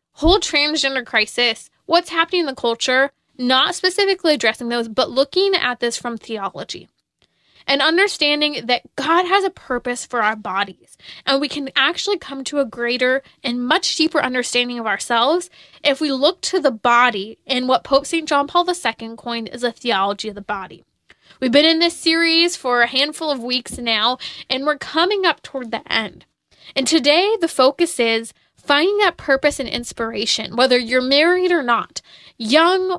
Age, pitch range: 20-39, 245-325 Hz